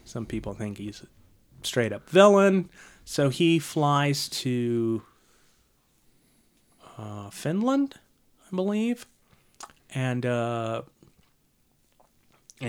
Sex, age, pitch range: male, 30-49, 110-140 Hz